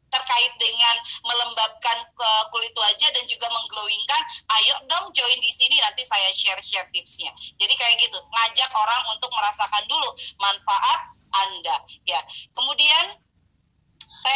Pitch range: 220-290 Hz